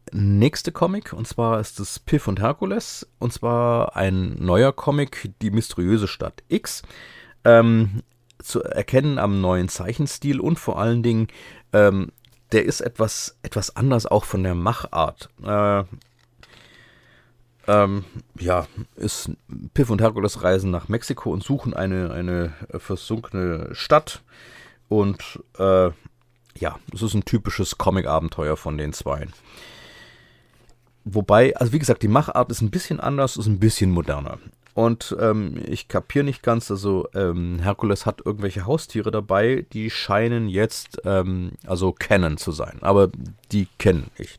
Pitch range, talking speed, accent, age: 95-120 Hz, 140 wpm, German, 30-49